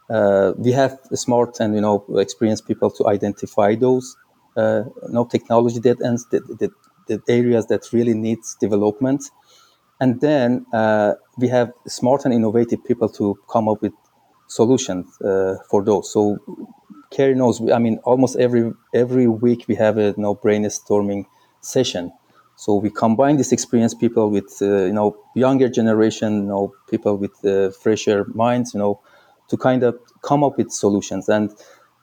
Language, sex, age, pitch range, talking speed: English, male, 30-49, 105-125 Hz, 165 wpm